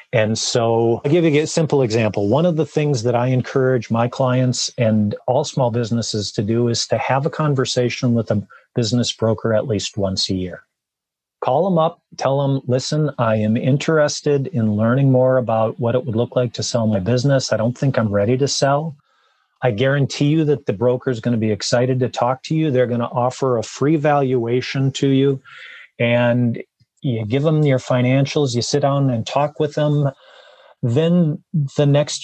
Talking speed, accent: 195 wpm, American